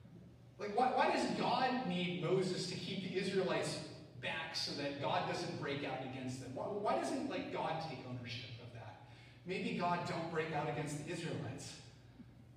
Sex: male